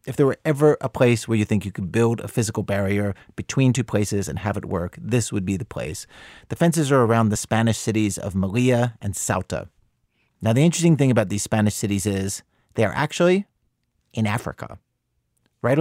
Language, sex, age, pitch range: English, male, 40-59, 105-135 Hz